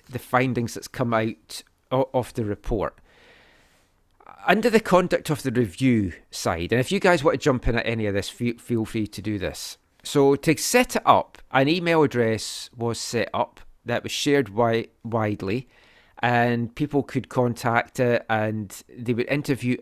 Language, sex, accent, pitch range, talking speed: English, male, British, 110-130 Hz, 170 wpm